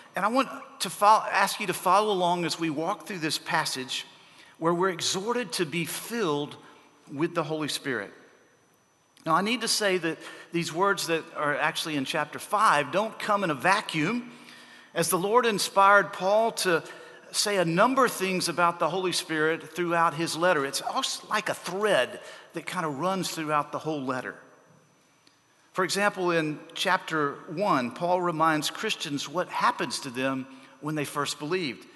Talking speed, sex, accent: 170 wpm, male, American